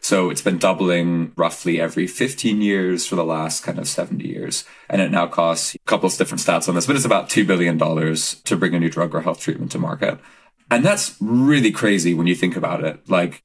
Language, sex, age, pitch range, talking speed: English, male, 30-49, 85-110 Hz, 230 wpm